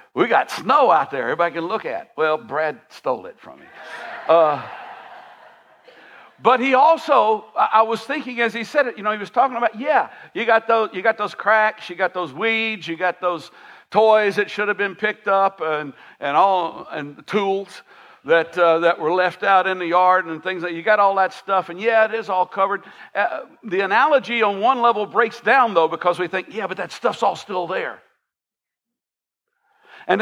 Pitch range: 170-225 Hz